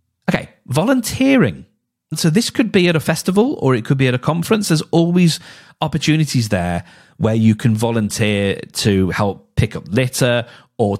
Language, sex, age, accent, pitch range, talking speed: English, male, 40-59, British, 95-125 Hz, 165 wpm